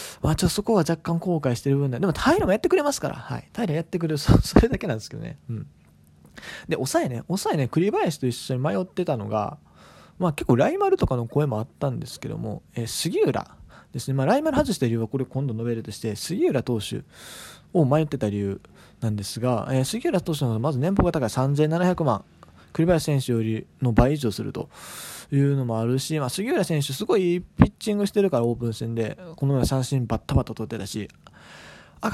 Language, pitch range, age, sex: Japanese, 125-195 Hz, 20-39, male